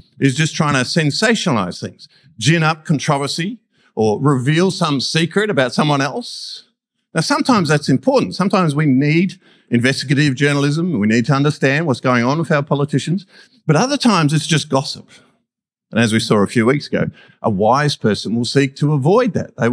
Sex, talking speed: male, 175 wpm